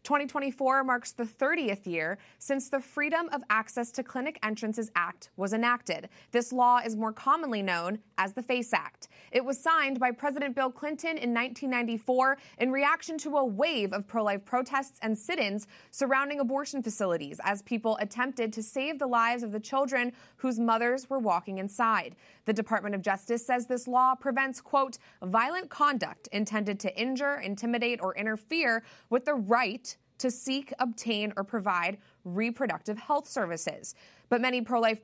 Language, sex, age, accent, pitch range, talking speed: English, female, 20-39, American, 220-270 Hz, 160 wpm